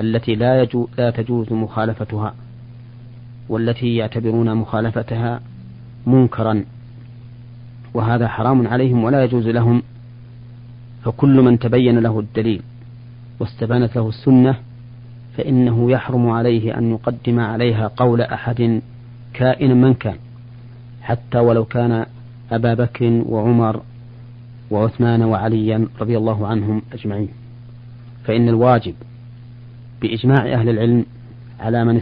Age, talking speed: 40-59, 100 wpm